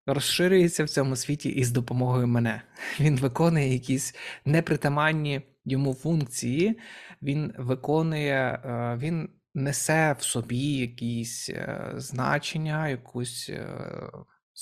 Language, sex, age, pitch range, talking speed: Ukrainian, male, 20-39, 120-160 Hz, 90 wpm